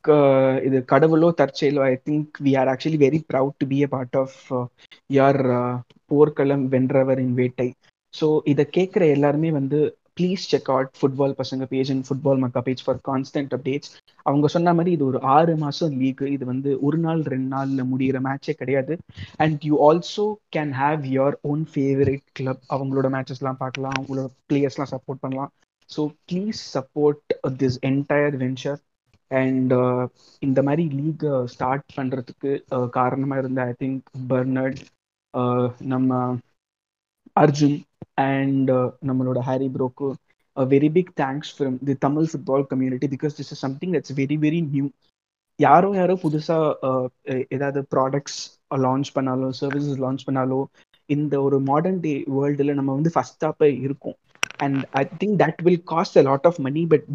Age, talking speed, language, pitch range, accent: 20-39, 155 wpm, Tamil, 130-150 Hz, native